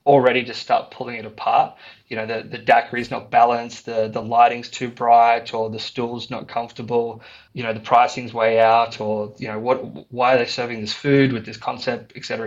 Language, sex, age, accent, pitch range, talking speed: English, male, 20-39, Australian, 115-130 Hz, 215 wpm